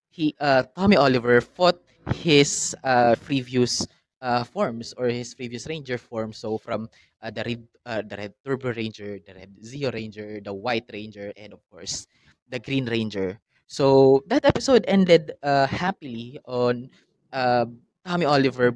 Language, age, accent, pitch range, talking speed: Filipino, 20-39, native, 110-135 Hz, 155 wpm